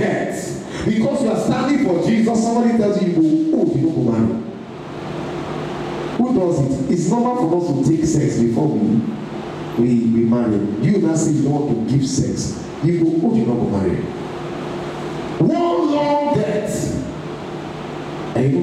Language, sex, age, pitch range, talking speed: English, male, 50-69, 135-225 Hz, 165 wpm